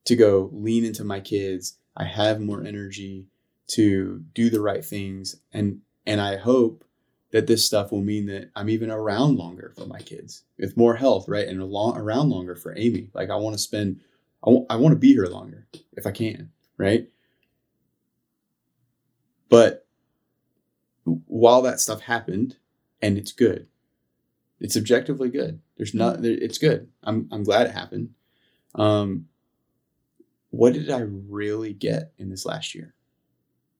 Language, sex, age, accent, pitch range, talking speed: English, male, 20-39, American, 95-115 Hz, 160 wpm